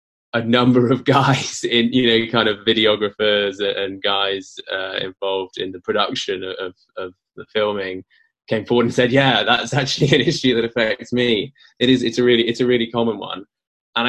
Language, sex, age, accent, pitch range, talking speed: English, male, 20-39, British, 100-125 Hz, 185 wpm